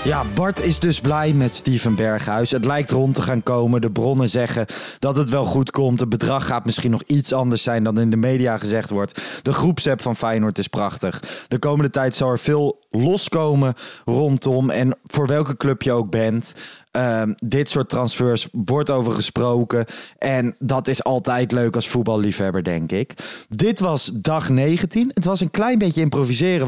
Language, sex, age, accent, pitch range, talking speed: Dutch, male, 20-39, Dutch, 120-155 Hz, 185 wpm